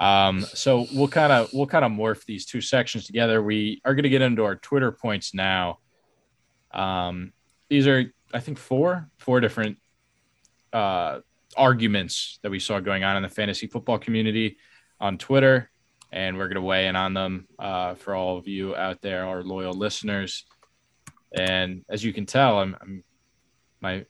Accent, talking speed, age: American, 175 wpm, 20-39